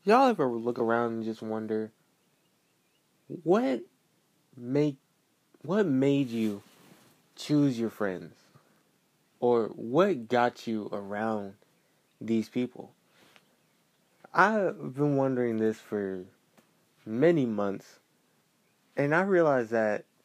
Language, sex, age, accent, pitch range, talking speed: English, male, 20-39, American, 115-170 Hz, 100 wpm